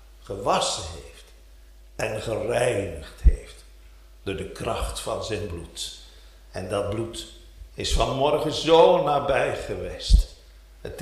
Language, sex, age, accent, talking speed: Dutch, male, 60-79, Dutch, 110 wpm